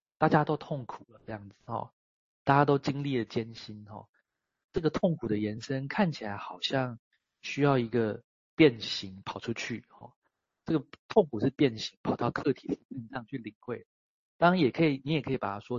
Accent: native